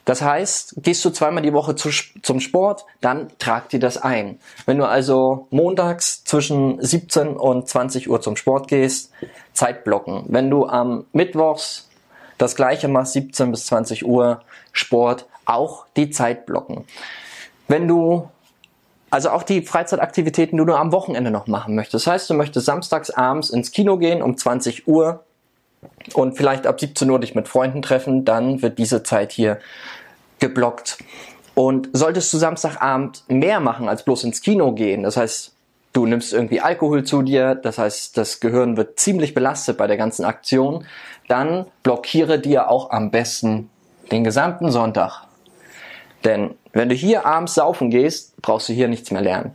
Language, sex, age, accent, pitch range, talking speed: German, male, 20-39, German, 120-160 Hz, 165 wpm